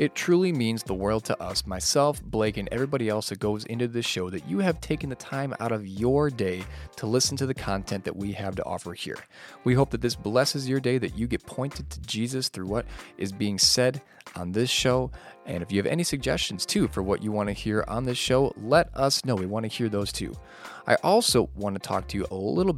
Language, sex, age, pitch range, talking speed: English, male, 20-39, 100-130 Hz, 245 wpm